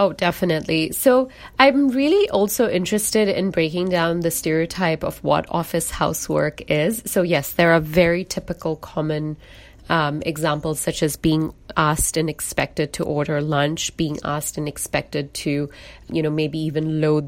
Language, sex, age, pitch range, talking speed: English, female, 30-49, 150-175 Hz, 155 wpm